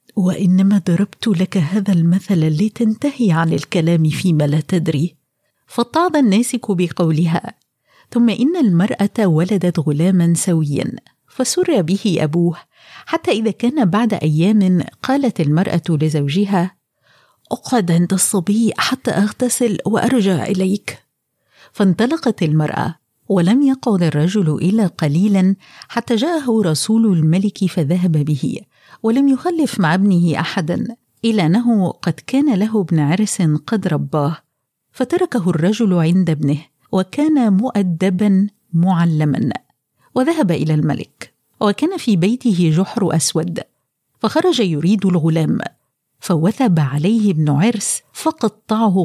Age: 50-69